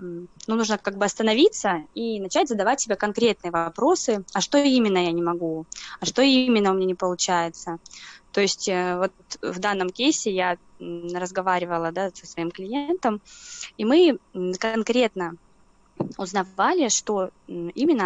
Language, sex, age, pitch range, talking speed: Russian, female, 20-39, 180-220 Hz, 140 wpm